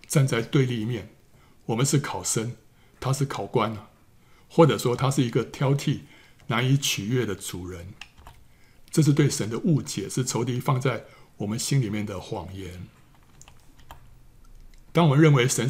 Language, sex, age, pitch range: Chinese, male, 60-79, 115-140 Hz